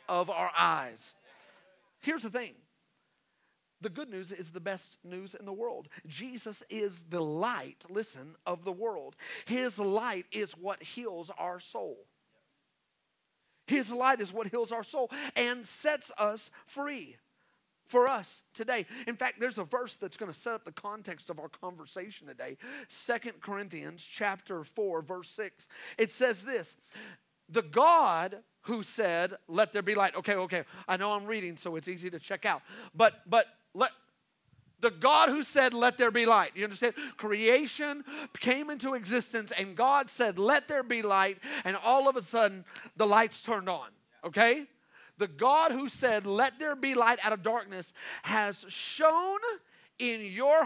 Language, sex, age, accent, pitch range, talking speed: English, male, 40-59, American, 195-255 Hz, 165 wpm